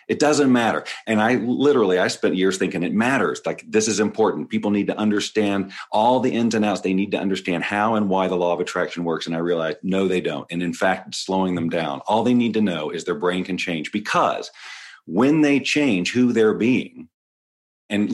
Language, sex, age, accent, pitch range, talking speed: English, male, 40-59, American, 95-115 Hz, 220 wpm